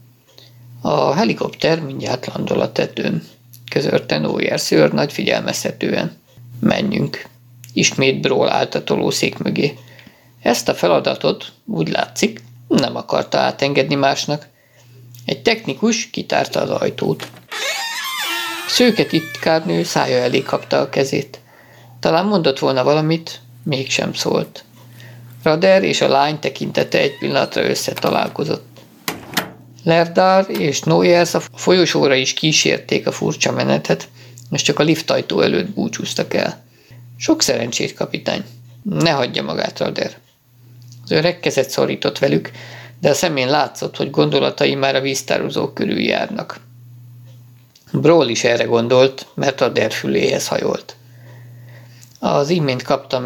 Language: Hungarian